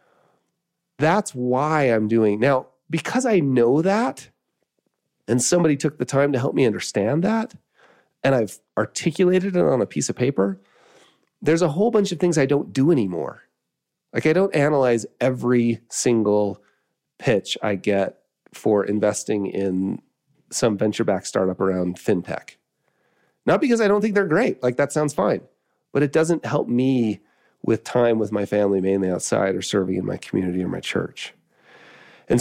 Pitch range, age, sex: 105-150 Hz, 30-49, male